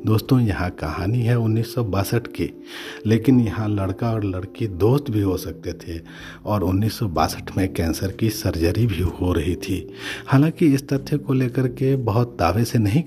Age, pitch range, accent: 50-69, 95-140 Hz, native